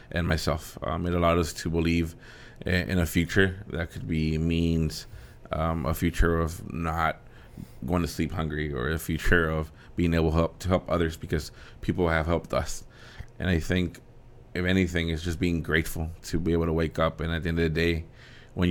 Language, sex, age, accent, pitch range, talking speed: English, male, 20-39, American, 85-95 Hz, 200 wpm